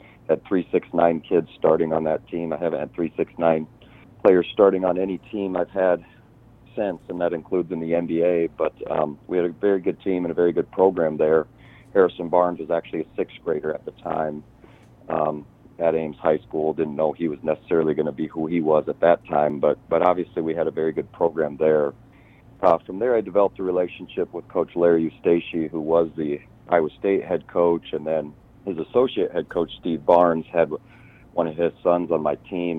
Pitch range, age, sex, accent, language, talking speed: 80-90 Hz, 40-59, male, American, English, 210 wpm